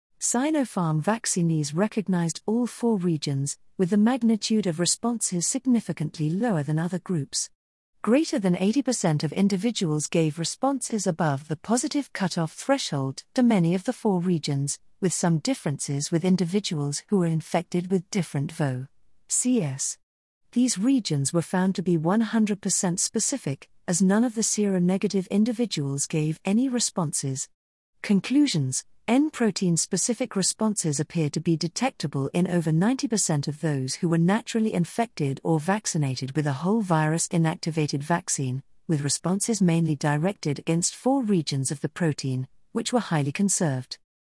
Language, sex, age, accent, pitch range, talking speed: English, female, 50-69, British, 155-215 Hz, 135 wpm